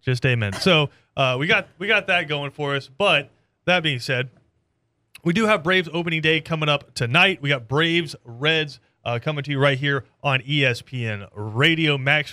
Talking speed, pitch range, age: 190 wpm, 130-155 Hz, 30-49